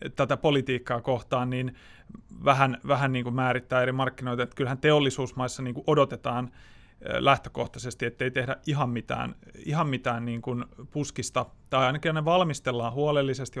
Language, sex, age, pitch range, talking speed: Finnish, male, 30-49, 125-145 Hz, 130 wpm